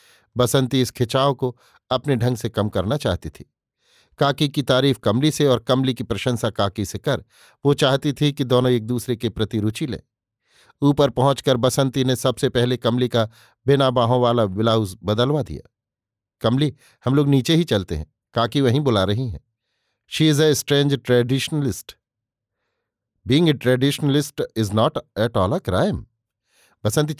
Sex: male